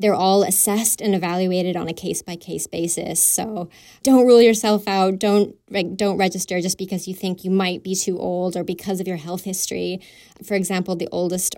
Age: 20-39